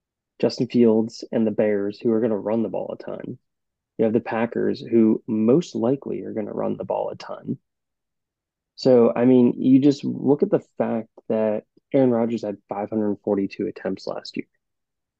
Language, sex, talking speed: English, male, 180 wpm